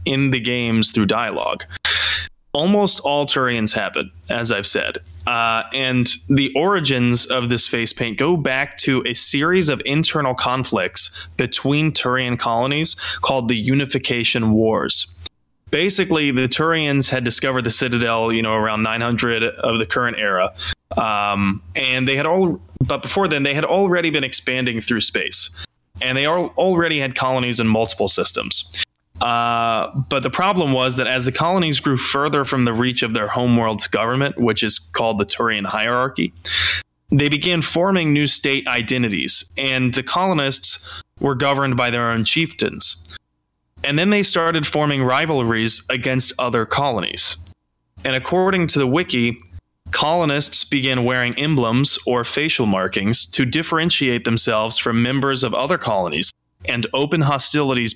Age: 20-39